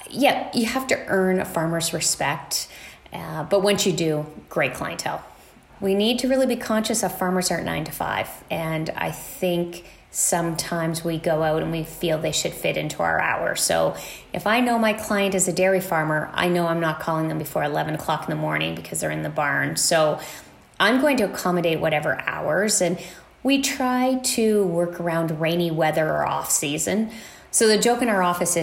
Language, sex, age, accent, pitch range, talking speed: English, female, 30-49, American, 160-220 Hz, 195 wpm